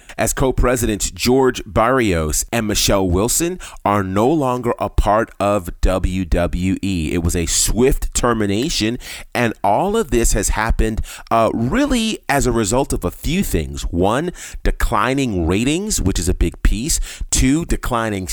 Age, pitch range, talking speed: 30-49, 90-120 Hz, 145 wpm